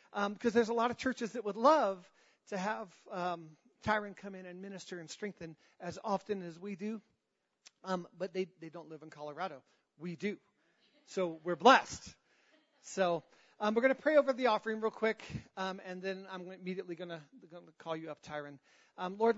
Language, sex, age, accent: English, male, 40-59, American